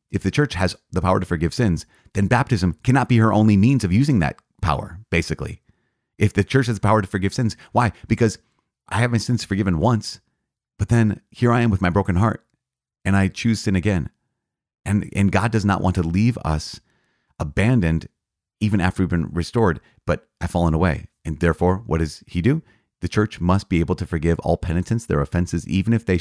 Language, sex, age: English, male, 30-49